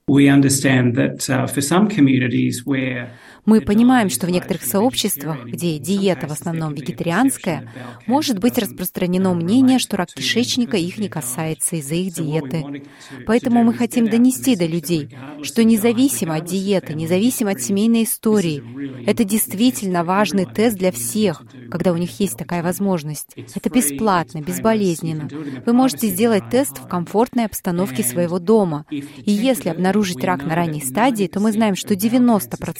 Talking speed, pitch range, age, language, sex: 135 wpm, 160-225 Hz, 20-39, Russian, female